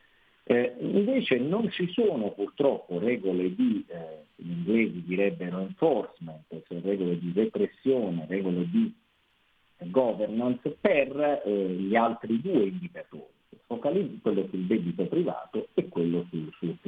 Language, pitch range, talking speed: Italian, 90-130 Hz, 120 wpm